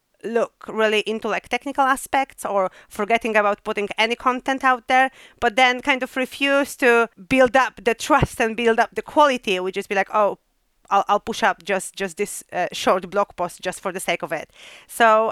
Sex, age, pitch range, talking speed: female, 30-49, 190-245 Hz, 205 wpm